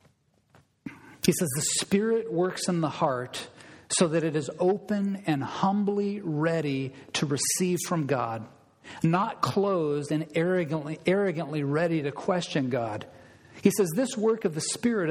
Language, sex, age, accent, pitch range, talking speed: English, male, 50-69, American, 140-180 Hz, 145 wpm